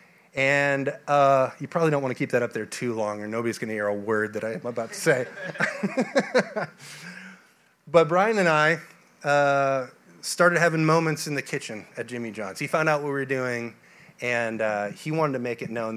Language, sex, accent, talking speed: English, male, American, 205 wpm